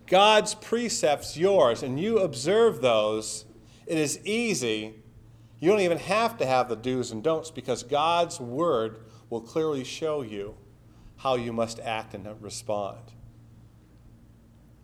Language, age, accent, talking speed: English, 40-59, American, 135 wpm